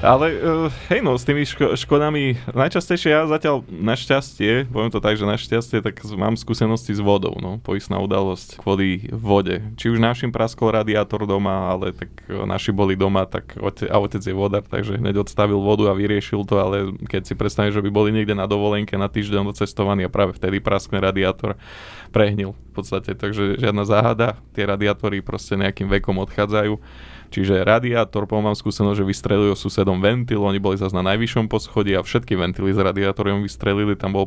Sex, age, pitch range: male, 20-39, 100-110 Hz